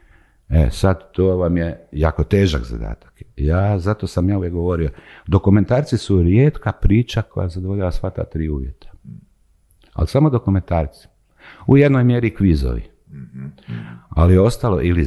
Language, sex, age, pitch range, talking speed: Croatian, male, 60-79, 80-105 Hz, 130 wpm